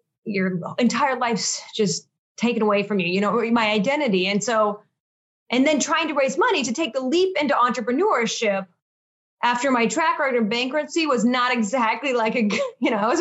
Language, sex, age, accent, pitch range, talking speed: English, female, 30-49, American, 200-265 Hz, 185 wpm